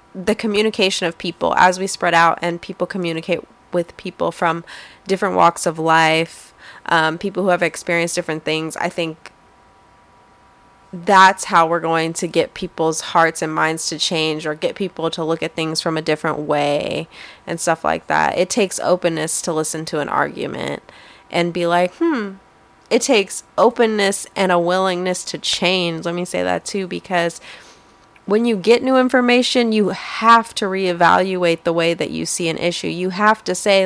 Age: 20-39